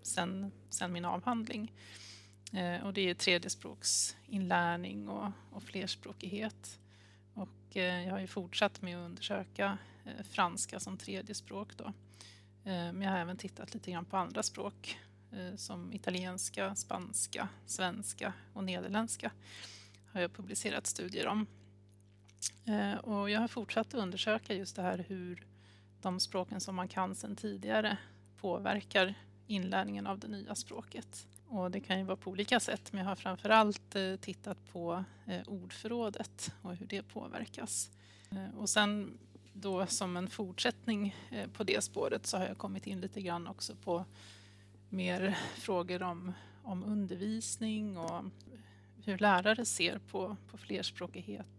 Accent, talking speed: native, 140 wpm